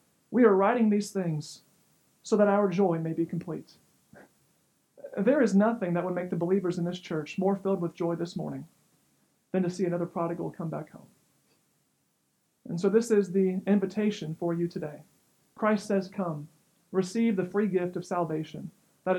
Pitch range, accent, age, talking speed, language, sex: 180-225 Hz, American, 40-59, 175 wpm, English, male